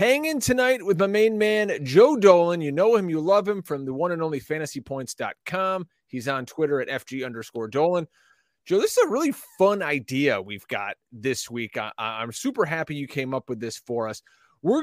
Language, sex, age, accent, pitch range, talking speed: English, male, 30-49, American, 130-205 Hz, 205 wpm